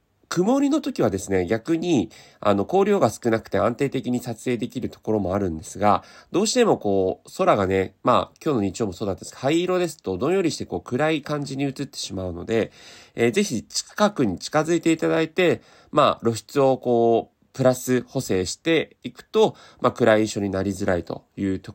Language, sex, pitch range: Japanese, male, 100-140 Hz